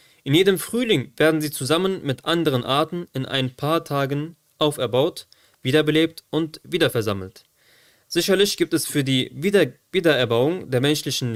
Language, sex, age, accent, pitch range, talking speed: German, male, 20-39, German, 130-175 Hz, 130 wpm